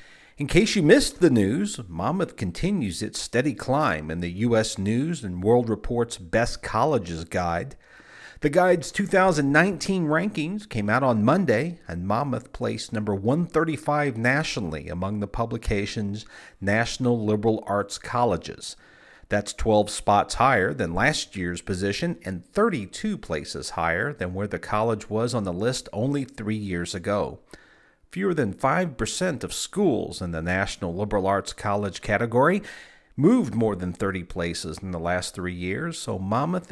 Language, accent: English, American